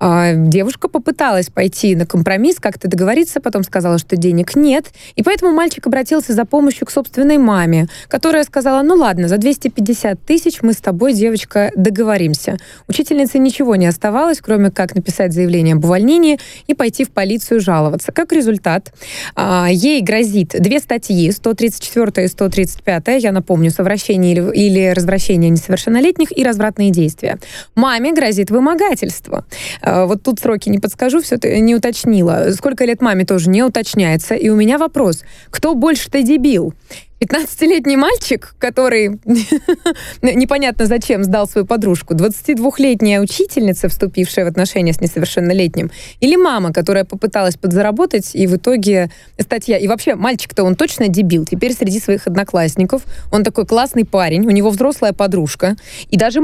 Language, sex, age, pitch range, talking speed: Russian, female, 20-39, 185-265 Hz, 145 wpm